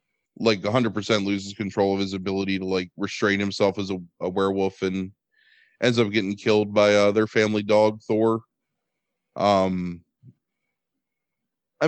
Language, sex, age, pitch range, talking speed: English, male, 20-39, 100-125 Hz, 140 wpm